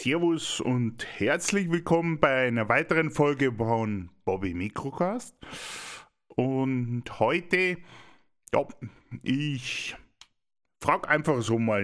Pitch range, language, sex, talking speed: 105-160 Hz, German, male, 95 wpm